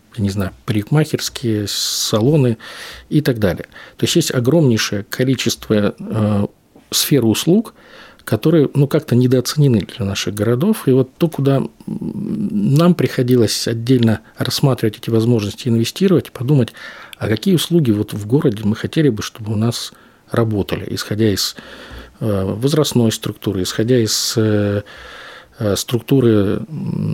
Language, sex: Russian, male